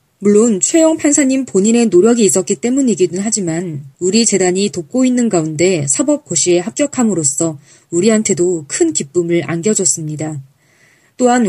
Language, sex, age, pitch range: Korean, female, 20-39, 165-235 Hz